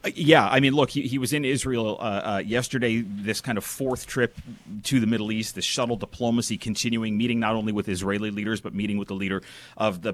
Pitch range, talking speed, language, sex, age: 105-125 Hz, 225 wpm, English, male, 30-49